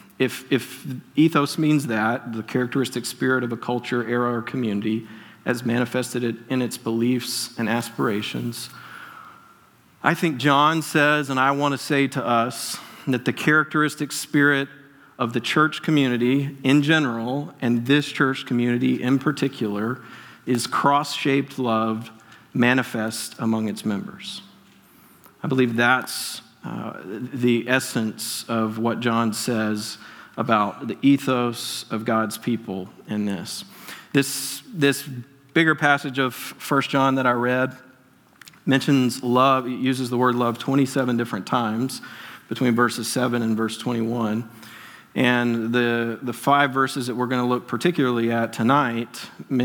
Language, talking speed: English, 135 wpm